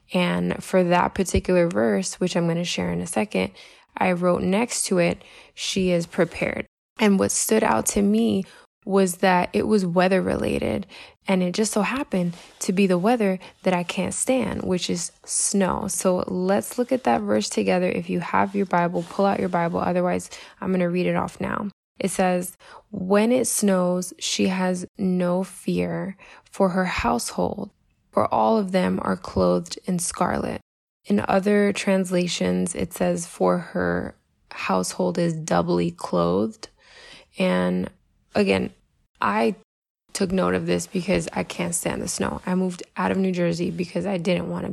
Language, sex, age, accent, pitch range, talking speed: English, female, 20-39, American, 170-195 Hz, 170 wpm